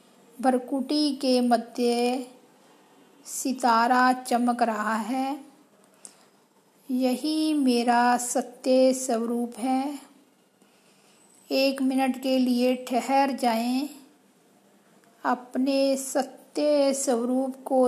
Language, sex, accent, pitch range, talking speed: Hindi, female, native, 240-275 Hz, 75 wpm